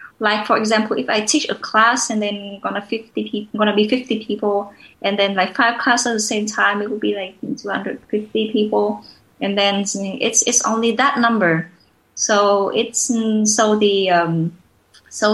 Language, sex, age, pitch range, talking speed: English, female, 20-39, 200-235 Hz, 185 wpm